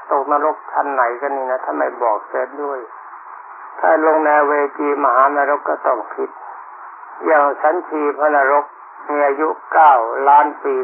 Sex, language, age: male, Thai, 60-79